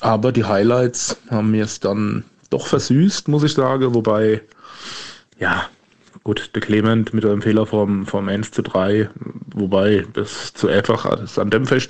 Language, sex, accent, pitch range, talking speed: German, male, German, 105-120 Hz, 160 wpm